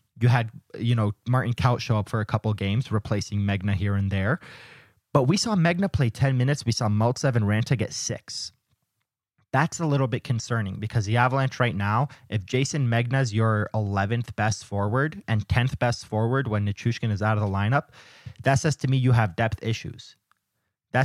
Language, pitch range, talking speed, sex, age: English, 105-125 Hz, 195 wpm, male, 20-39